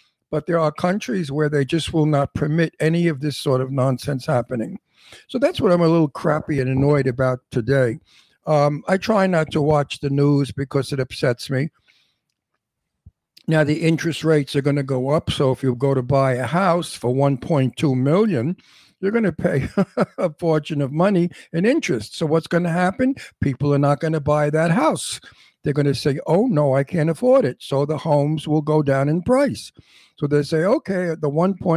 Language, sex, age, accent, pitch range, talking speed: English, male, 60-79, American, 140-165 Hz, 200 wpm